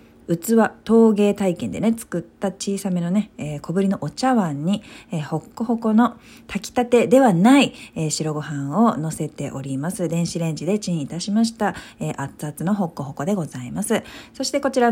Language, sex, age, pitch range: Japanese, female, 40-59, 160-230 Hz